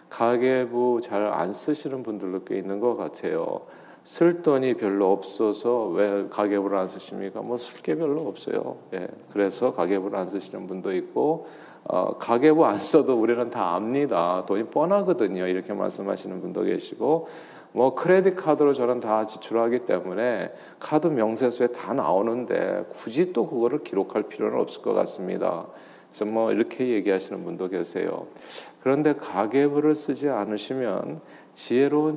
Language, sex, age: Korean, male, 40-59